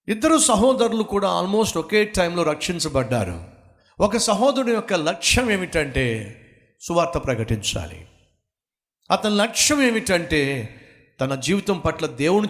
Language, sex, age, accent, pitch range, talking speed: Telugu, male, 50-69, native, 115-185 Hz, 100 wpm